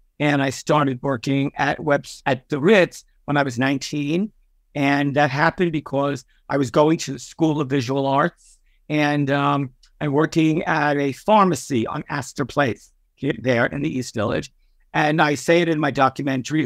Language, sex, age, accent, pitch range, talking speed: English, male, 50-69, American, 140-175 Hz, 175 wpm